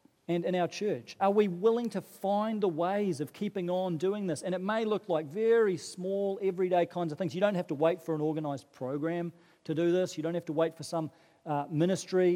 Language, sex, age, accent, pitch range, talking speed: English, male, 40-59, Australian, 170-215 Hz, 235 wpm